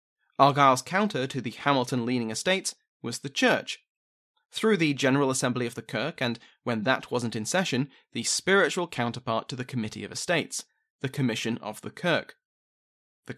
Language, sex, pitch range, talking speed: English, male, 120-150 Hz, 160 wpm